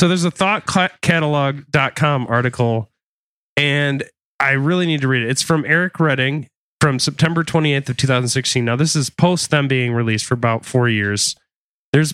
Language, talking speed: English, 165 wpm